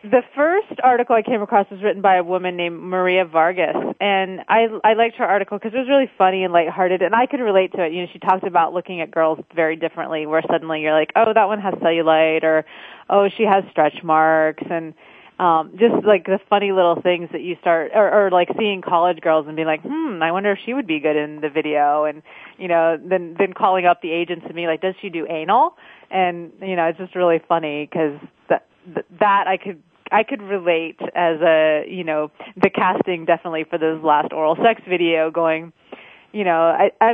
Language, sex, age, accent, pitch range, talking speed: English, female, 30-49, American, 160-200 Hz, 220 wpm